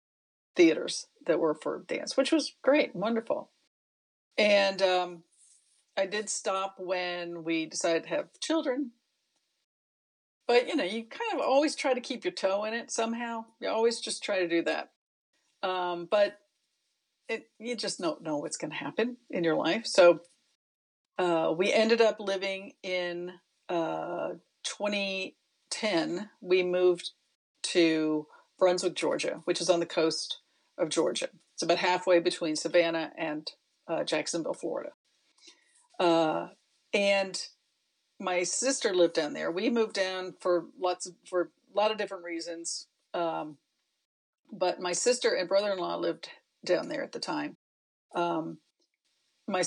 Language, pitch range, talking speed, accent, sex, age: English, 175-240 Hz, 145 wpm, American, female, 50-69